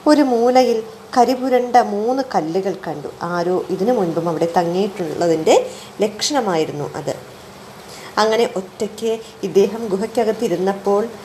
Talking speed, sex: 95 wpm, female